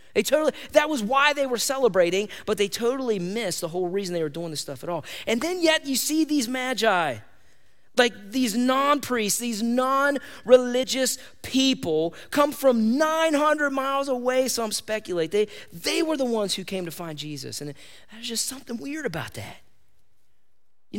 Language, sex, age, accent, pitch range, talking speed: English, male, 30-49, American, 180-260 Hz, 170 wpm